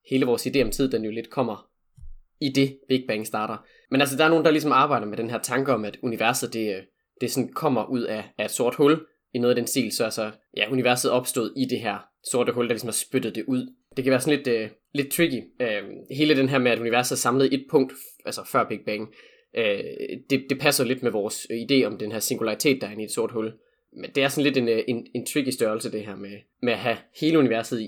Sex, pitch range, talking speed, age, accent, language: male, 115-140 Hz, 260 wpm, 20-39, native, Danish